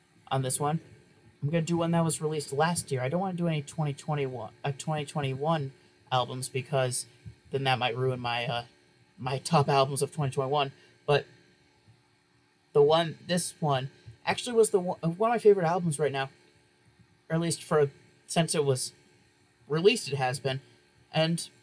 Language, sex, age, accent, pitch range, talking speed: English, male, 30-49, American, 130-160 Hz, 180 wpm